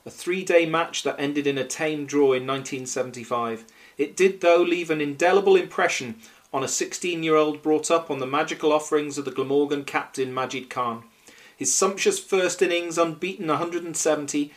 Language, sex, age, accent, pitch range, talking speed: English, male, 40-59, British, 135-165 Hz, 160 wpm